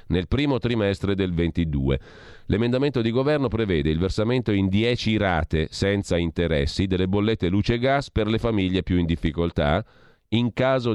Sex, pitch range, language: male, 80-110 Hz, Italian